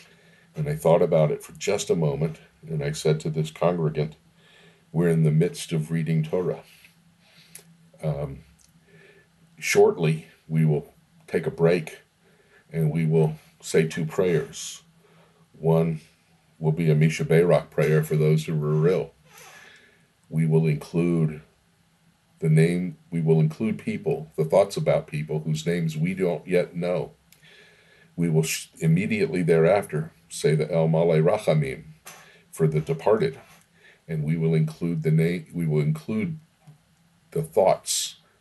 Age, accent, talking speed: 50-69, American, 140 wpm